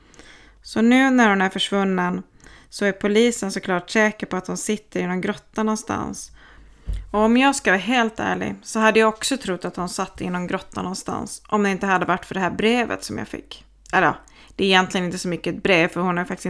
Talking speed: 235 wpm